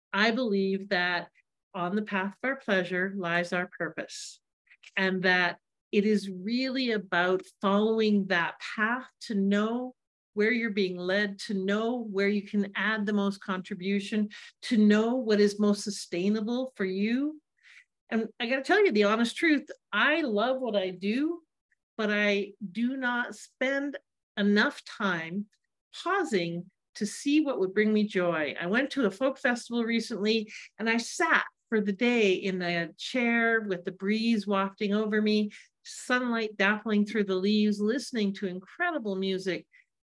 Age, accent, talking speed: 50-69, American, 155 wpm